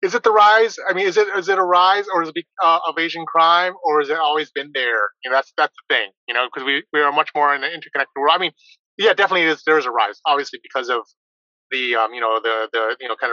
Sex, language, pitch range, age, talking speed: male, English, 130-175 Hz, 30-49, 285 wpm